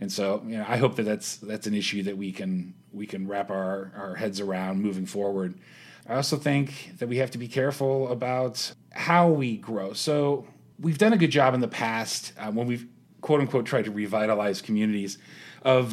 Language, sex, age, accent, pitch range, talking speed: English, male, 30-49, American, 105-135 Hz, 205 wpm